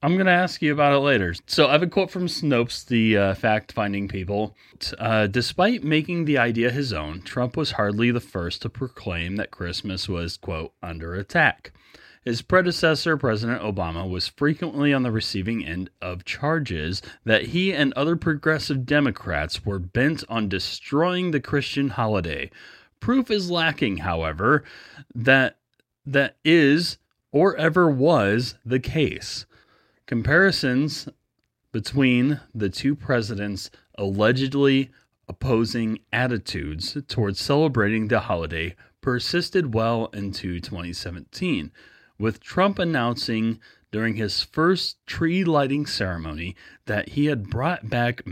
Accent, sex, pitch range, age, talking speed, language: American, male, 100-145 Hz, 30-49, 130 wpm, English